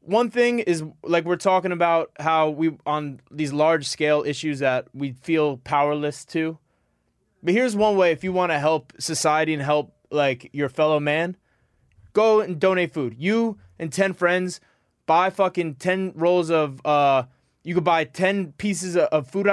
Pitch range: 145-185 Hz